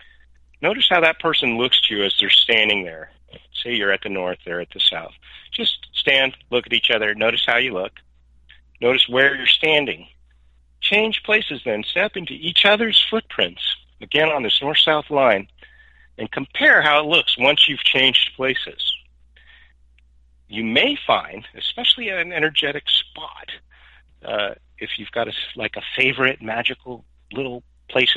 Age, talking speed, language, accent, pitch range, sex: 50-69, 160 wpm, English, American, 90-130 Hz, male